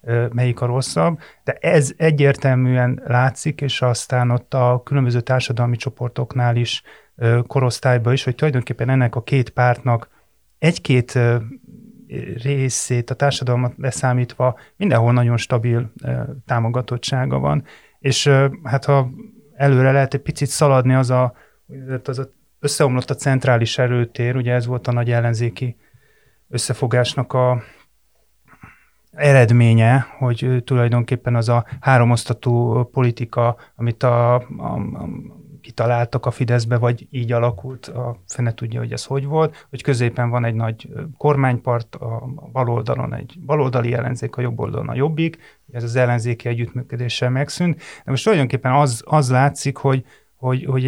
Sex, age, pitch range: male, 30-49, 120-140 Hz